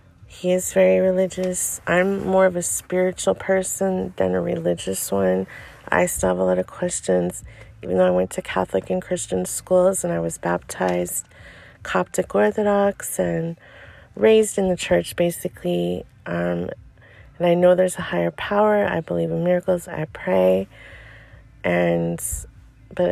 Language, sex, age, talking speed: English, female, 30-49, 150 wpm